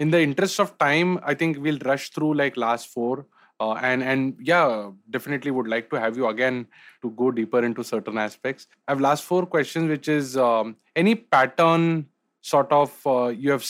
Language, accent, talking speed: English, Indian, 195 wpm